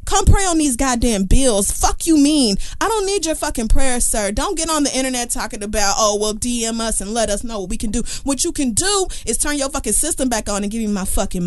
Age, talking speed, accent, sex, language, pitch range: 20-39, 265 wpm, American, female, English, 215-290 Hz